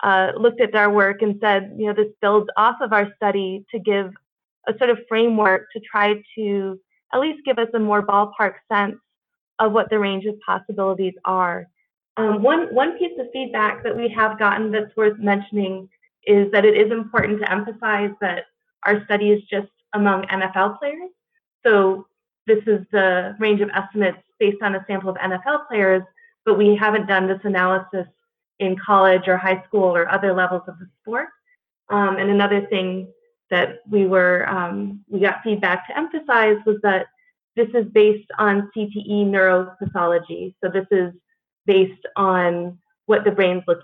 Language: English